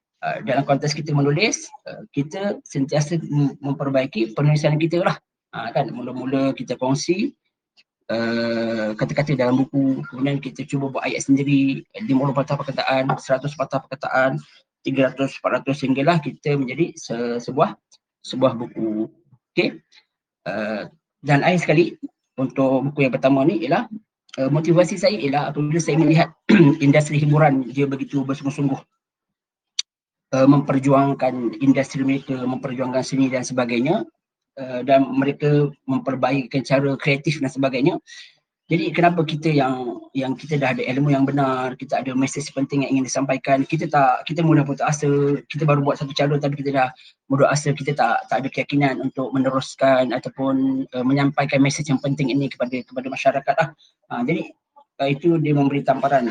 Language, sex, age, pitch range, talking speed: Malay, male, 20-39, 130-150 Hz, 150 wpm